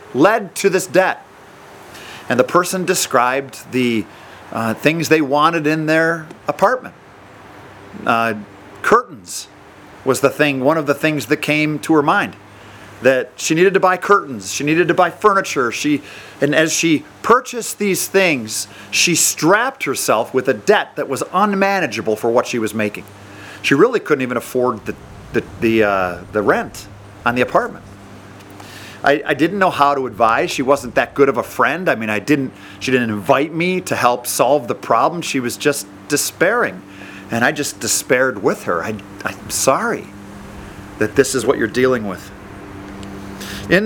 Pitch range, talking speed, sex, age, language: 100-160 Hz, 165 wpm, male, 40-59, English